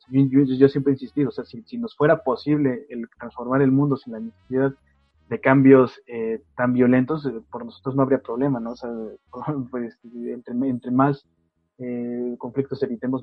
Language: Spanish